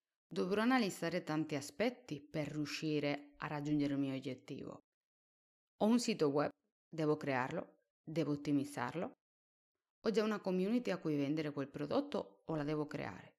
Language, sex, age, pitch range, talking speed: Italian, female, 30-49, 140-190 Hz, 145 wpm